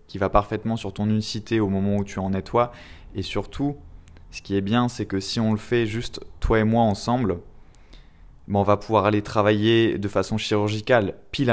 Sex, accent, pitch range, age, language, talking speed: male, French, 95-110 Hz, 20-39, French, 210 wpm